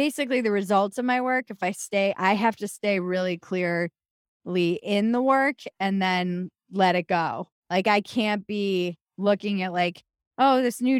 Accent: American